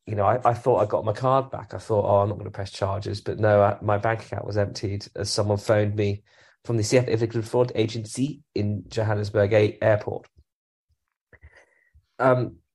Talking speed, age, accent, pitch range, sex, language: 200 wpm, 30-49, British, 105-120 Hz, male, English